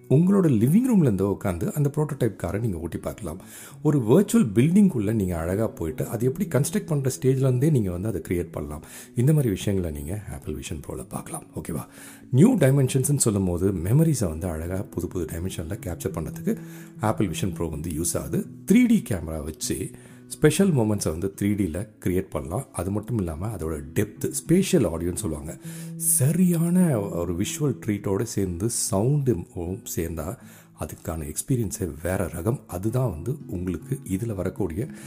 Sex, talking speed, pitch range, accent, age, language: male, 145 wpm, 85-130 Hz, native, 40-59, Tamil